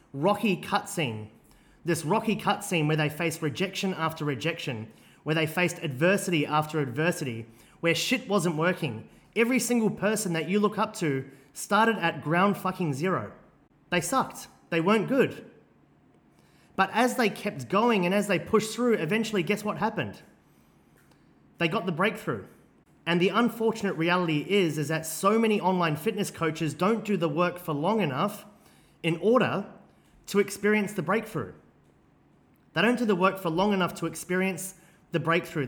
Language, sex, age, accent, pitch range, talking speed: English, male, 30-49, Australian, 155-195 Hz, 160 wpm